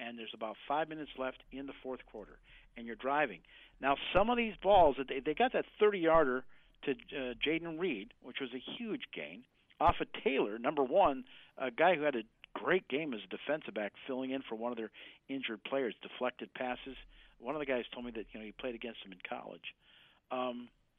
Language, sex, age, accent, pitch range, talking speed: English, male, 50-69, American, 125-155 Hz, 205 wpm